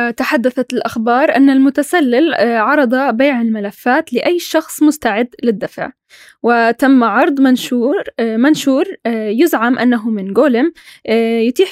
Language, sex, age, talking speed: Arabic, female, 10-29, 100 wpm